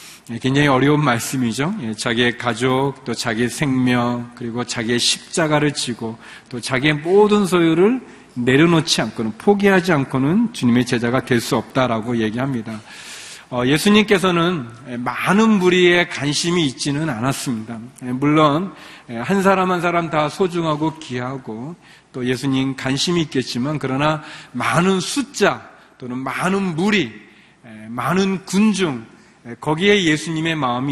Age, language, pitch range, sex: 40-59, Korean, 120-170 Hz, male